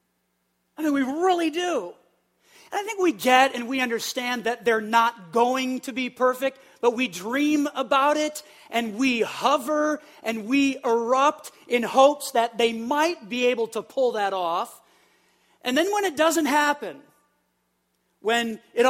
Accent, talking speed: American, 160 wpm